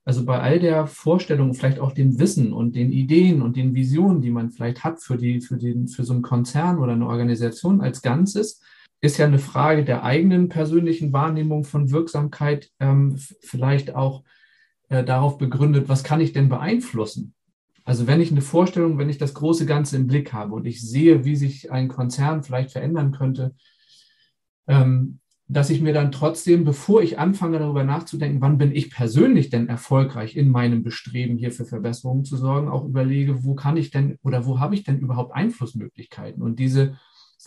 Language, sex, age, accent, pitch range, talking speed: German, male, 40-59, German, 125-150 Hz, 185 wpm